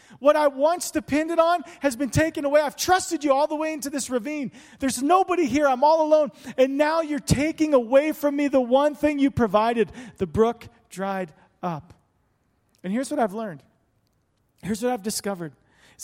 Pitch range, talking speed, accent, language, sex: 220-290 Hz, 185 wpm, American, English, male